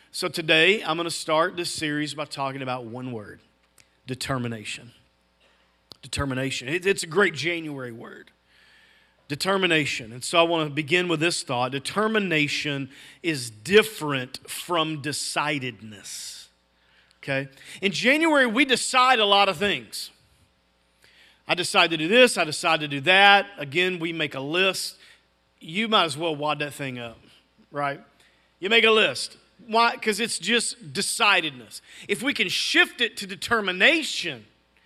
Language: English